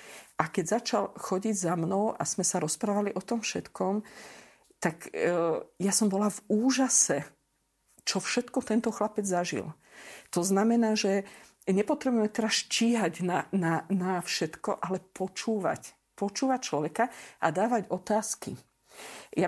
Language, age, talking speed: Slovak, 50-69, 130 wpm